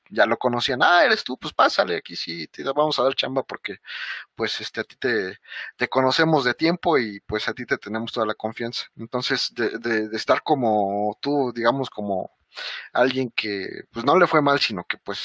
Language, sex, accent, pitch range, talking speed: Spanish, male, Mexican, 105-130 Hz, 210 wpm